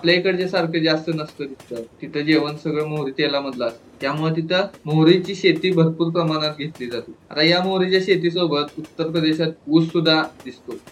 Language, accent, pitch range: Marathi, native, 135-165 Hz